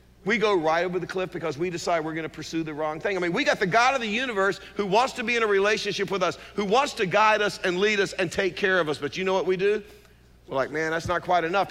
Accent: American